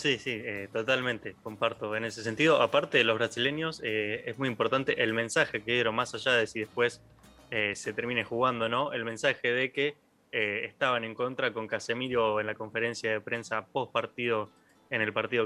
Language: Spanish